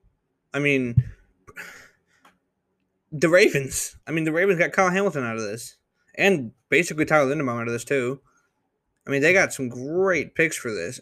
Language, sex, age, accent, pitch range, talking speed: English, male, 20-39, American, 115-145 Hz, 170 wpm